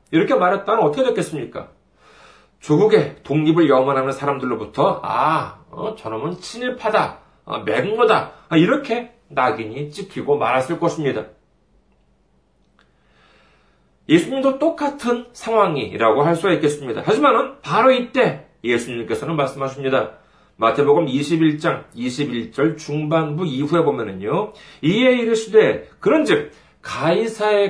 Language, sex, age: Korean, male, 40-59